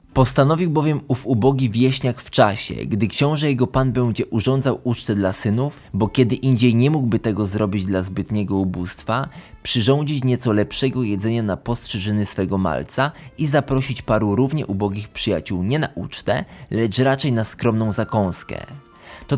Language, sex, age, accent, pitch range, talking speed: Polish, male, 20-39, native, 110-135 Hz, 150 wpm